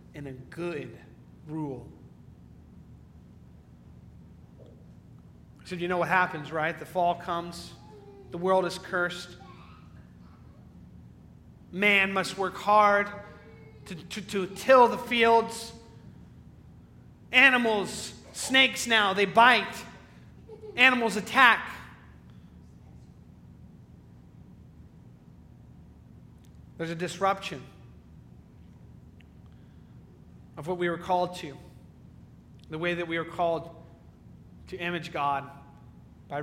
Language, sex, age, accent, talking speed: English, male, 40-59, American, 85 wpm